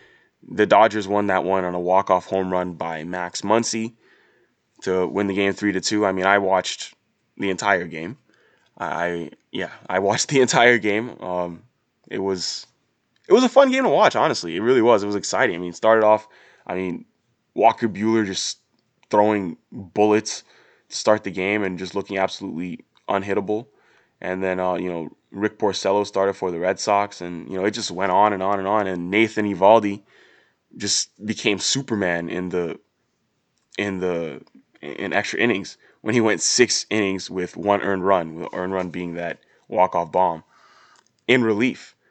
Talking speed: 180 wpm